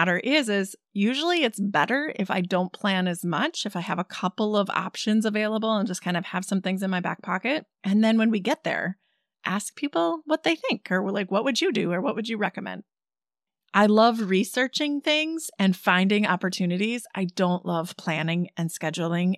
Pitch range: 185-255 Hz